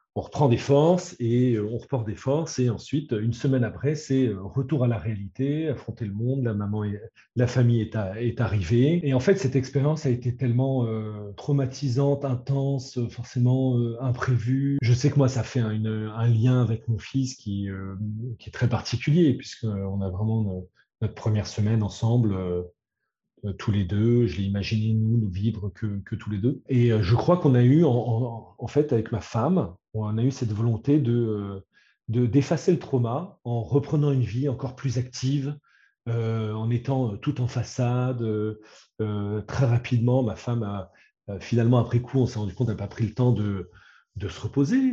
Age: 40-59